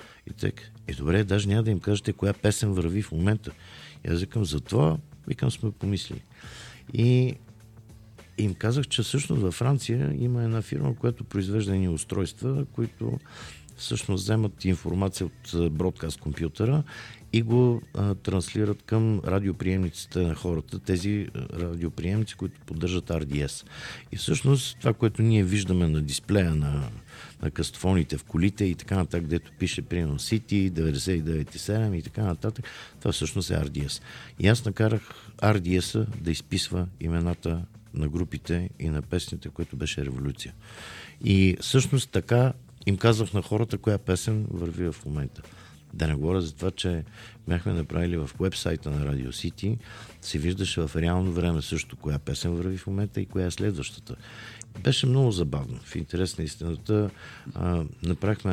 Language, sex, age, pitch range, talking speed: Bulgarian, male, 50-69, 85-110 Hz, 150 wpm